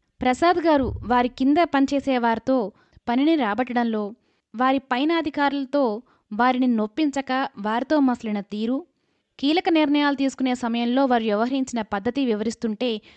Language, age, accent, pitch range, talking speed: Telugu, 20-39, native, 225-275 Hz, 110 wpm